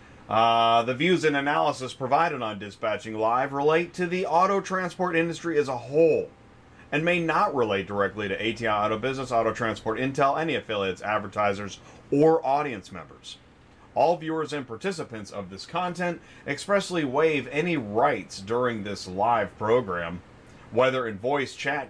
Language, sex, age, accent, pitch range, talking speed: English, male, 30-49, American, 110-165 Hz, 150 wpm